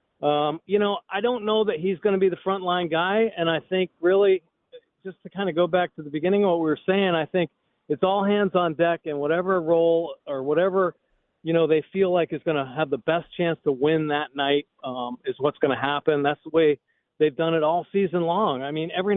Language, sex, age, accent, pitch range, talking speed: English, male, 40-59, American, 155-195 Hz, 245 wpm